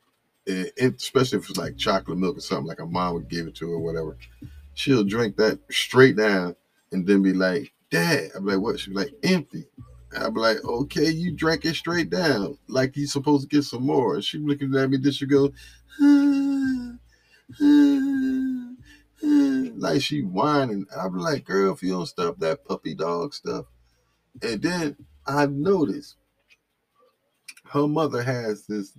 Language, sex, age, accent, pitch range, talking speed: English, male, 30-49, American, 100-150 Hz, 175 wpm